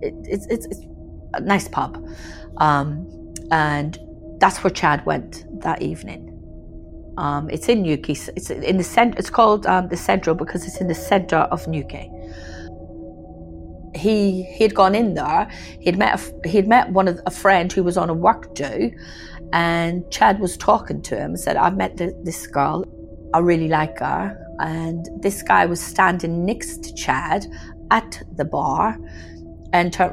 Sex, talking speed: female, 170 wpm